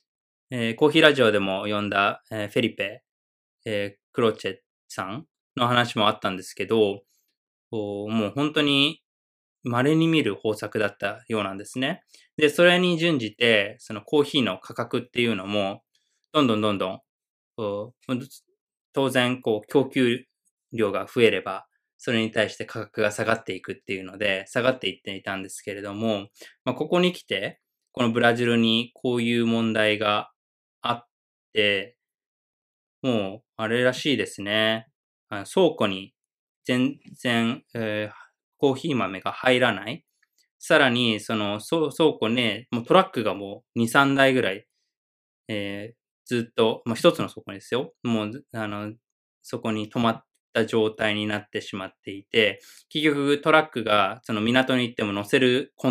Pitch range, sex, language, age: 105-130 Hz, male, Japanese, 20-39